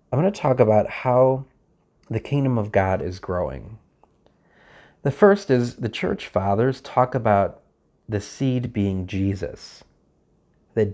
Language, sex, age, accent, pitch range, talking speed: English, male, 40-59, American, 100-130 Hz, 135 wpm